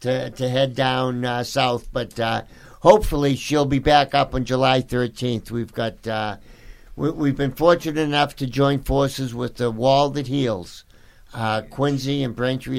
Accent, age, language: American, 60-79, English